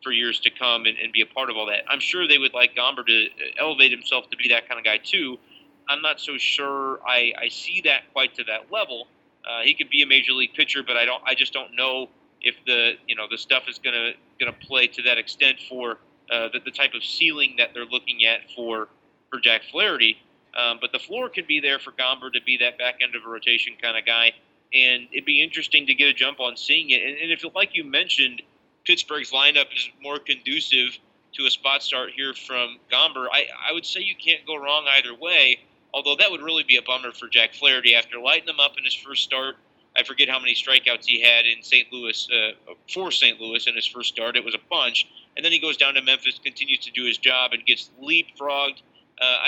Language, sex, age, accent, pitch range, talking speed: English, male, 30-49, American, 120-145 Hz, 245 wpm